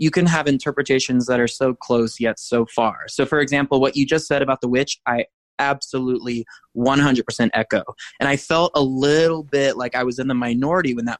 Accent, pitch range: American, 125-155 Hz